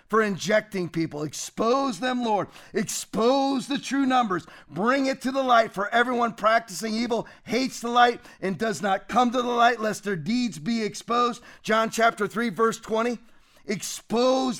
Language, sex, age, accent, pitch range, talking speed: English, male, 40-59, American, 195-245 Hz, 165 wpm